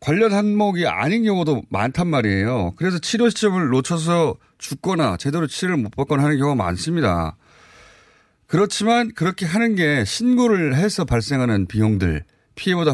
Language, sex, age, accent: Korean, male, 30-49, native